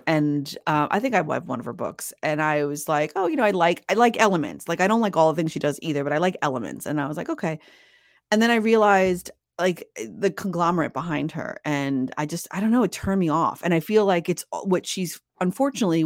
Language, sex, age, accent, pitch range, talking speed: English, female, 30-49, American, 150-185 Hz, 255 wpm